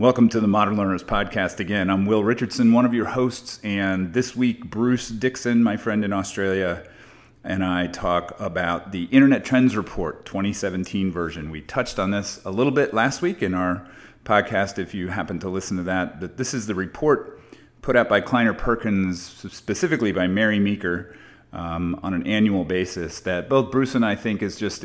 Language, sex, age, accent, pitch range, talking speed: English, male, 30-49, American, 90-115 Hz, 190 wpm